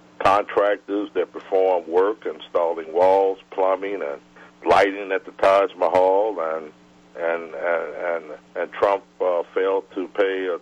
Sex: male